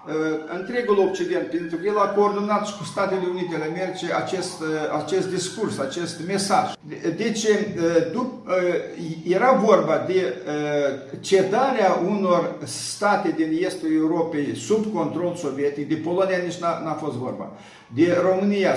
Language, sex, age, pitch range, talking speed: Romanian, male, 50-69, 150-190 Hz, 120 wpm